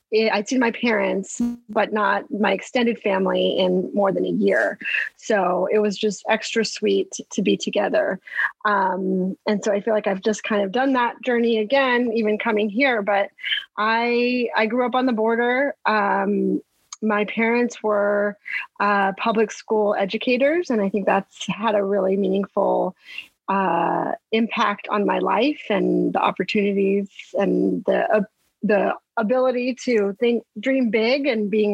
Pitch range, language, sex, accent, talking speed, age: 205-235 Hz, English, female, American, 155 wpm, 30-49